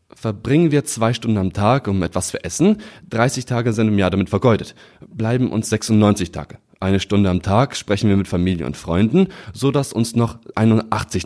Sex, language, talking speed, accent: male, German, 190 wpm, German